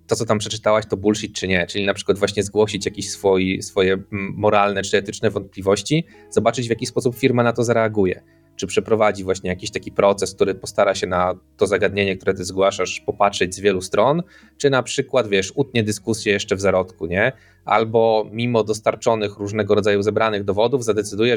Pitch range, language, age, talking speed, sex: 100-115 Hz, Polish, 20-39, 185 wpm, male